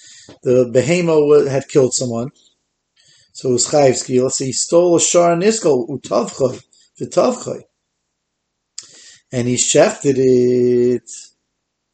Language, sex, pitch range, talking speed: English, male, 125-155 Hz, 105 wpm